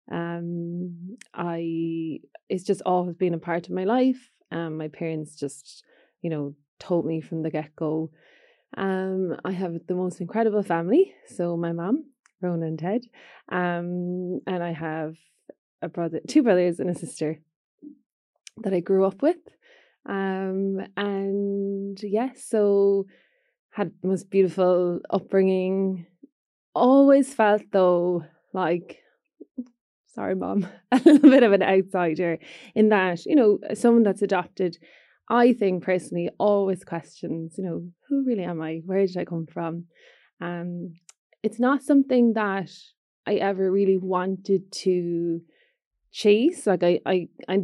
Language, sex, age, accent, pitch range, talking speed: English, female, 20-39, Irish, 170-210 Hz, 140 wpm